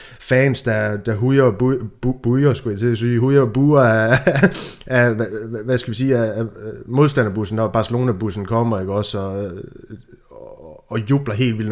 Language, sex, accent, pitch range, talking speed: Danish, male, native, 105-130 Hz, 165 wpm